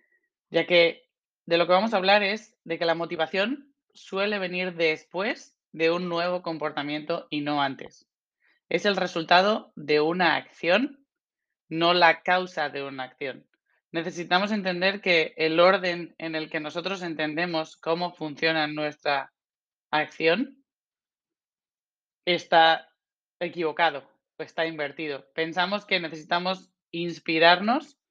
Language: Spanish